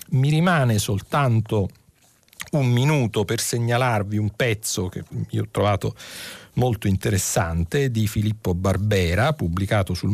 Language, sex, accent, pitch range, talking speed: Italian, male, native, 95-130 Hz, 120 wpm